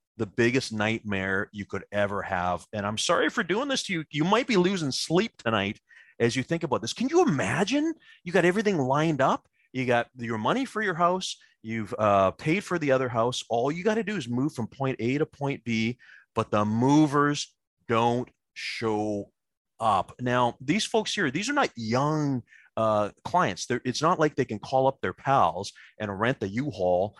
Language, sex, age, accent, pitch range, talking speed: English, male, 30-49, American, 105-140 Hz, 200 wpm